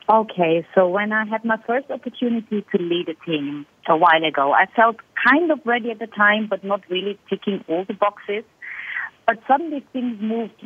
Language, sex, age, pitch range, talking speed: English, female, 30-49, 165-215 Hz, 190 wpm